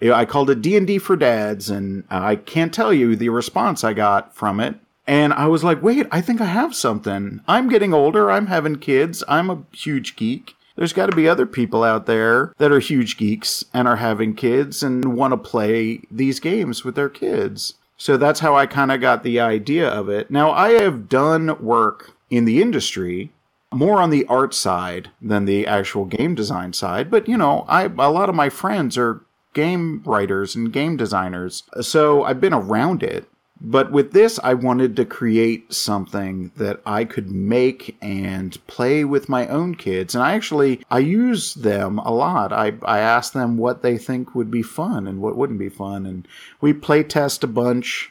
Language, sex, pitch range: English, male, 105-150 Hz